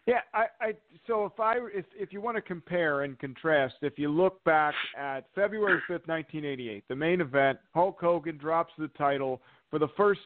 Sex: male